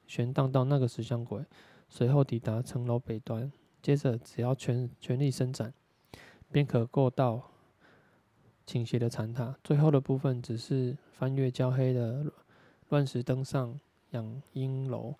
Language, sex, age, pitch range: Chinese, male, 20-39, 120-140 Hz